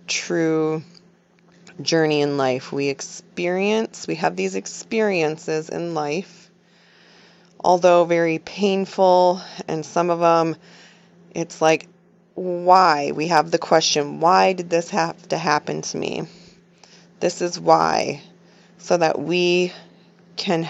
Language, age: English, 20-39